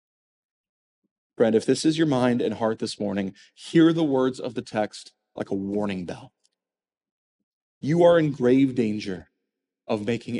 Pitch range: 110-155 Hz